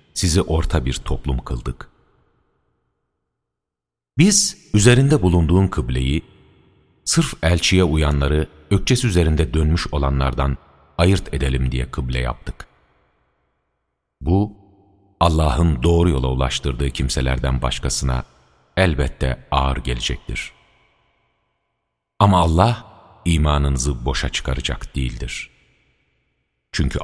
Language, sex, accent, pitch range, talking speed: Turkish, male, native, 65-85 Hz, 85 wpm